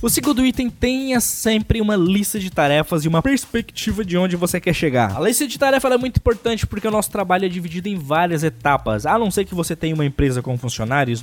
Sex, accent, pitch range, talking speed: male, Brazilian, 165-225 Hz, 235 wpm